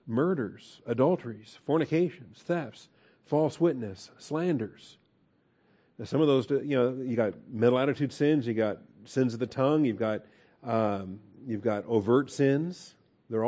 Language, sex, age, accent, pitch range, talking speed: English, male, 50-69, American, 110-130 Hz, 145 wpm